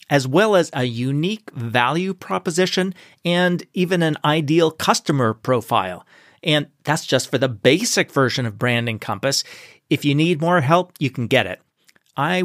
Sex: male